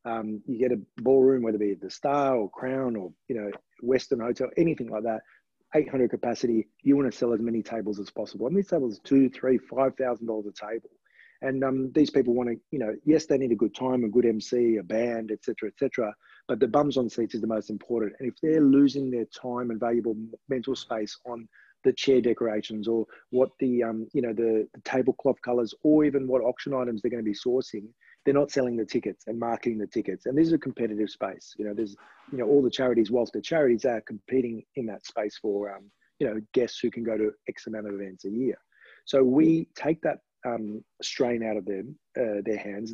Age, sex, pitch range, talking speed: 30-49, male, 110-130 Hz, 230 wpm